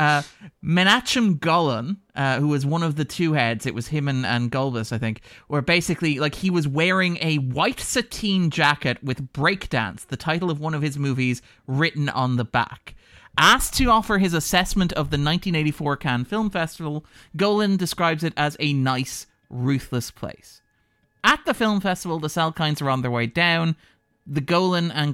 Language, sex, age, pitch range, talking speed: English, male, 30-49, 125-170 Hz, 180 wpm